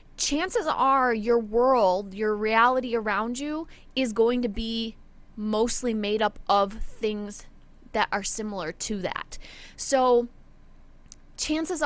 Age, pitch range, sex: 20-39, 215-260 Hz, female